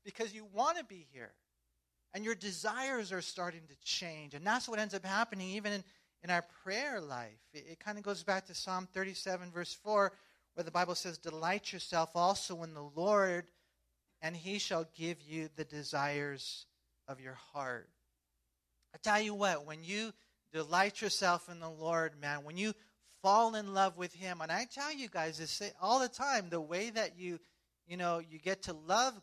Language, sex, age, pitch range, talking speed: English, male, 40-59, 150-205 Hz, 195 wpm